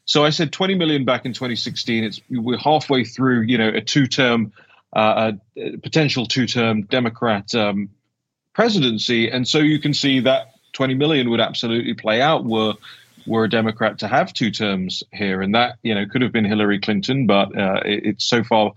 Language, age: English, 30-49